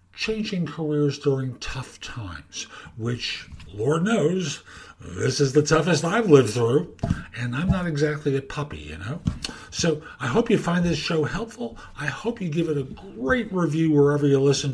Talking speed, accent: 170 wpm, American